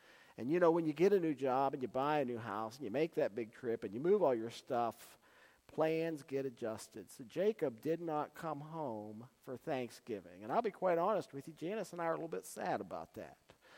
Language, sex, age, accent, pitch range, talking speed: English, male, 50-69, American, 130-175 Hz, 240 wpm